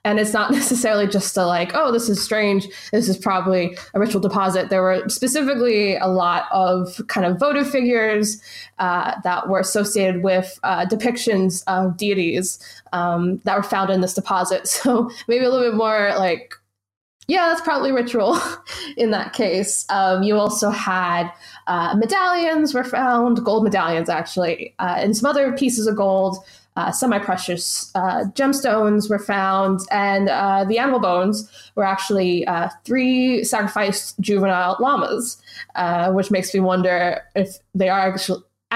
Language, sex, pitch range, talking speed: English, female, 185-240 Hz, 155 wpm